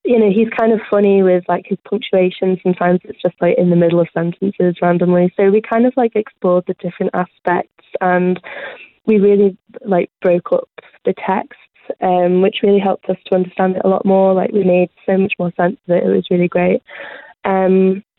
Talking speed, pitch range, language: 200 wpm, 180-205 Hz, English